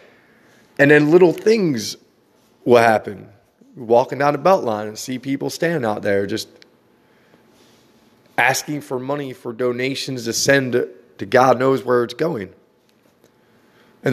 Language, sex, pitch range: English, male, 110-140 Hz